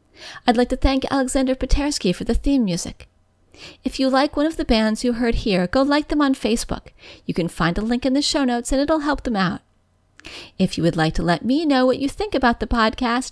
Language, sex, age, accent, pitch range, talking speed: English, female, 40-59, American, 220-290 Hz, 240 wpm